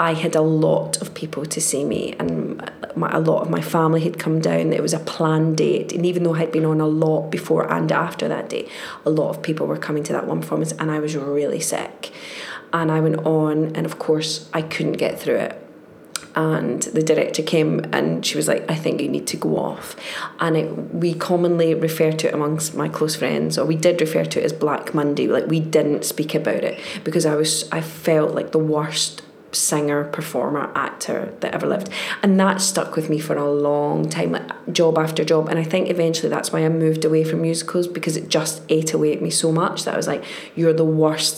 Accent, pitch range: British, 155-170 Hz